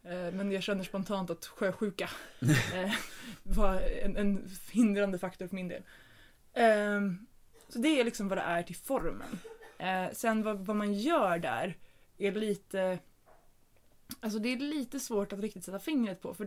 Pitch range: 180-210 Hz